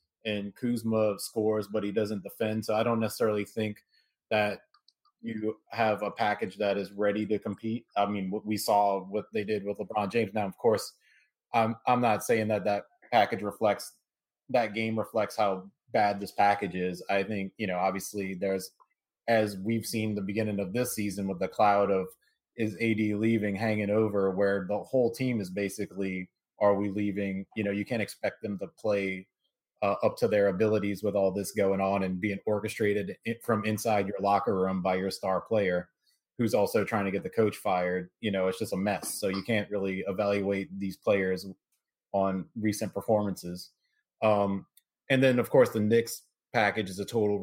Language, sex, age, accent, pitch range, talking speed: English, male, 30-49, American, 100-110 Hz, 190 wpm